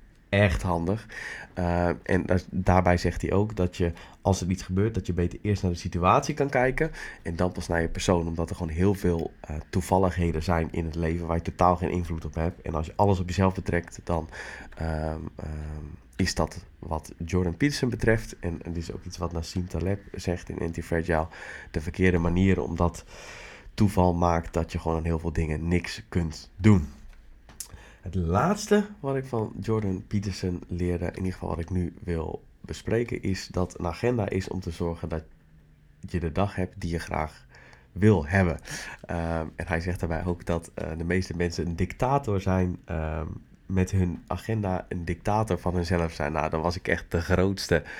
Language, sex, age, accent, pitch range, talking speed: Dutch, male, 20-39, Dutch, 85-95 Hz, 190 wpm